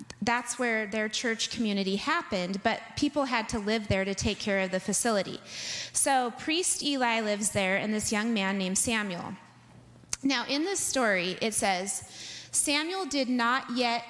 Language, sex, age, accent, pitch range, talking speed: English, female, 30-49, American, 195-275 Hz, 165 wpm